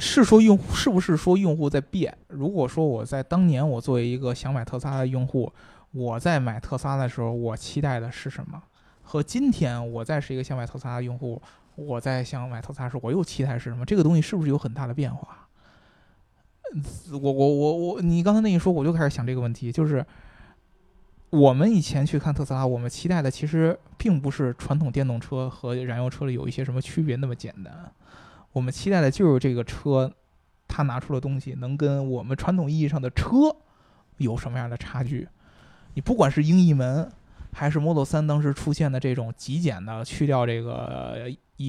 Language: Chinese